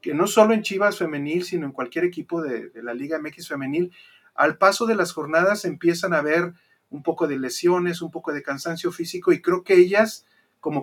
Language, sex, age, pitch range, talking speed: Spanish, male, 40-59, 145-180 Hz, 210 wpm